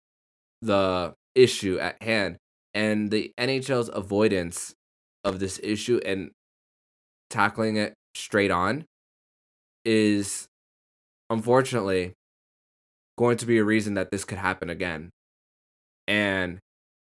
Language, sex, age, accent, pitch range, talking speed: English, male, 20-39, American, 90-105 Hz, 100 wpm